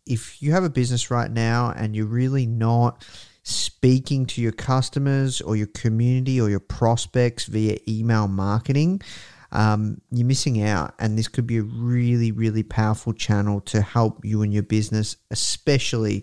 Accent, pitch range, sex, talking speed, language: Australian, 110-140 Hz, male, 165 wpm, English